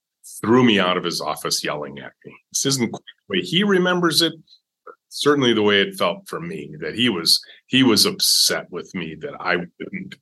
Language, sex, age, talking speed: English, male, 30-49, 200 wpm